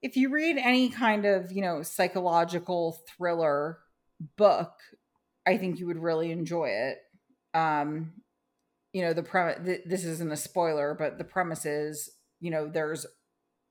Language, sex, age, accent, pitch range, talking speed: English, female, 30-49, American, 155-185 Hz, 155 wpm